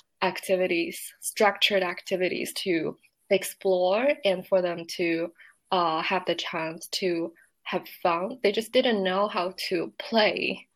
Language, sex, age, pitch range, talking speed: English, female, 20-39, 175-205 Hz, 130 wpm